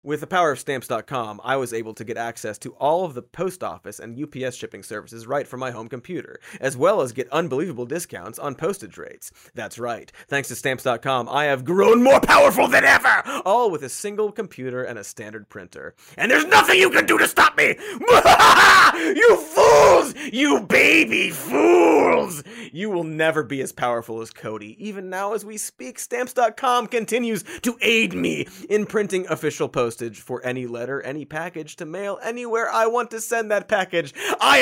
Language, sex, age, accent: English, male, 30-49, American